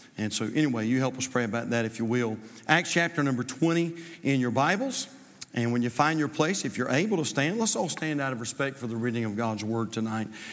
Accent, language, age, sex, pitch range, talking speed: American, English, 50-69, male, 145-190 Hz, 245 wpm